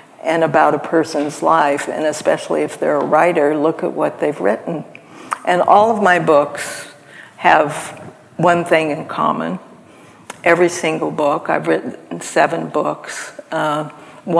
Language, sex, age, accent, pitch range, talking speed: English, female, 60-79, American, 150-165 Hz, 140 wpm